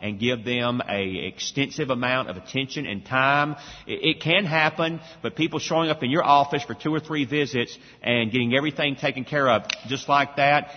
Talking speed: 190 wpm